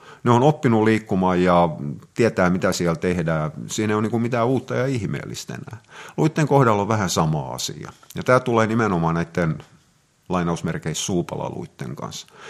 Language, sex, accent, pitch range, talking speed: Finnish, male, native, 90-130 Hz, 150 wpm